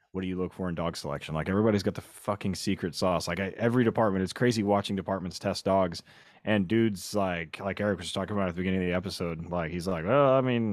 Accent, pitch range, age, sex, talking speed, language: American, 100-130 Hz, 30-49, male, 245 wpm, English